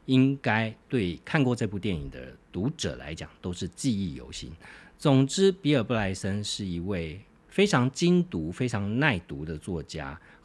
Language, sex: Chinese, male